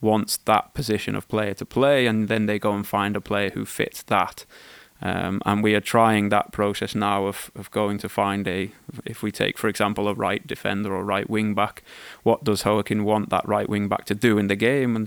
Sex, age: male, 20-39